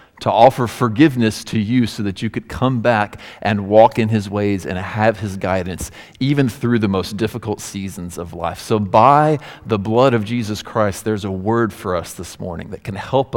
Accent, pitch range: American, 95-120 Hz